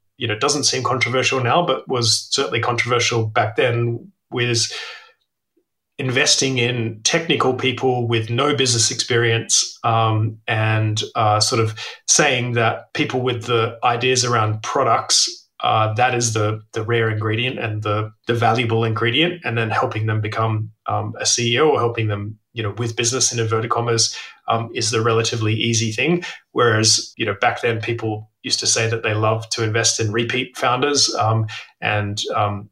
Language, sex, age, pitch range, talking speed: English, male, 30-49, 110-120 Hz, 165 wpm